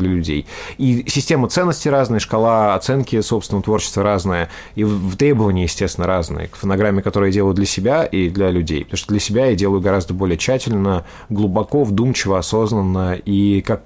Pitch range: 95-110 Hz